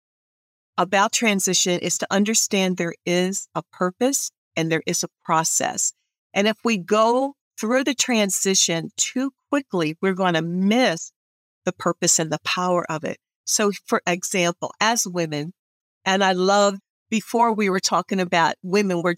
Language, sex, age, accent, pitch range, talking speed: English, female, 50-69, American, 175-220 Hz, 155 wpm